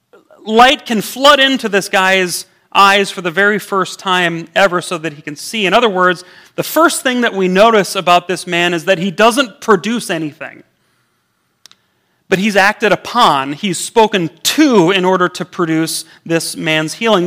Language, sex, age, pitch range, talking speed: English, male, 30-49, 175-220 Hz, 175 wpm